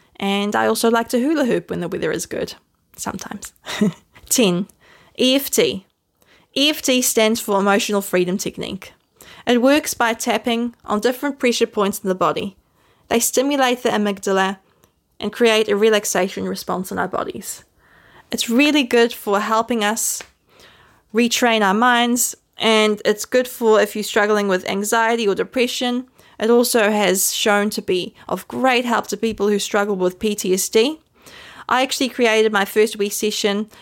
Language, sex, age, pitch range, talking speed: English, female, 20-39, 205-240 Hz, 155 wpm